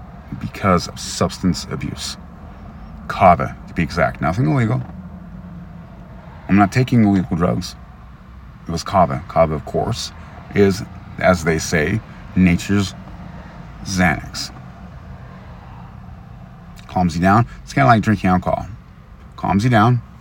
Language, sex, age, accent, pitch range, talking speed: English, male, 40-59, American, 80-100 Hz, 115 wpm